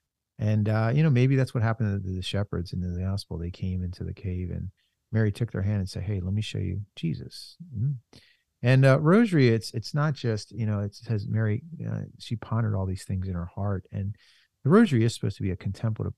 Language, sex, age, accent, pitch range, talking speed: English, male, 40-59, American, 95-120 Hz, 235 wpm